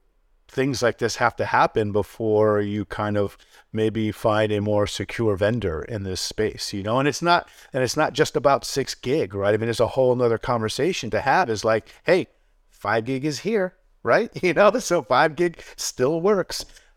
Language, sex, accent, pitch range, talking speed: English, male, American, 105-125 Hz, 200 wpm